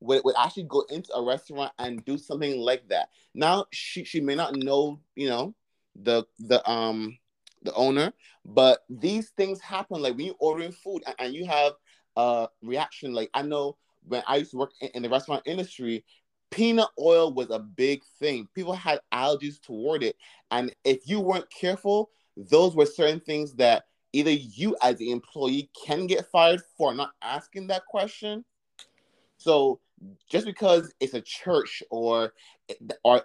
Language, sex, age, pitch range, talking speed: English, male, 30-49, 125-180 Hz, 170 wpm